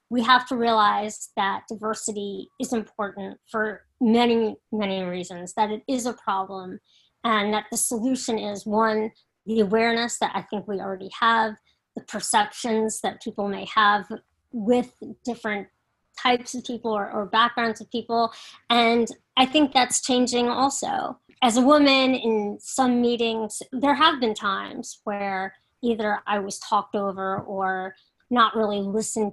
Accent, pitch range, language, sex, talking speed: American, 205-255 Hz, English, female, 150 wpm